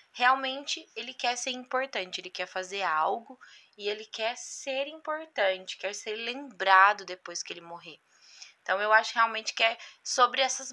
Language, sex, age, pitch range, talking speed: Portuguese, female, 20-39, 190-245 Hz, 160 wpm